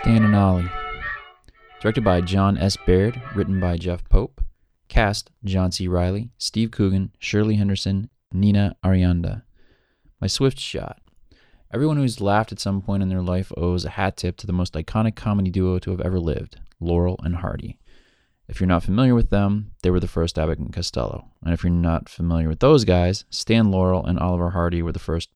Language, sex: English, male